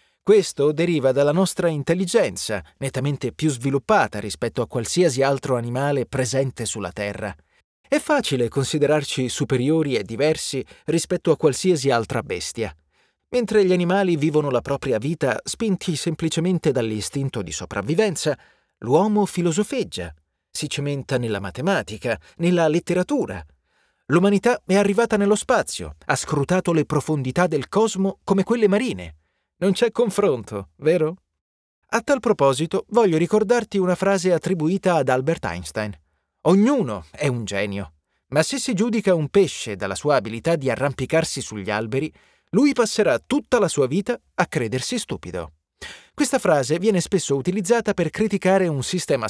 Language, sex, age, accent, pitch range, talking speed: Italian, male, 30-49, native, 125-195 Hz, 135 wpm